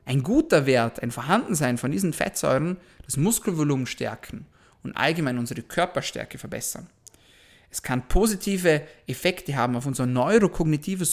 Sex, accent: male, German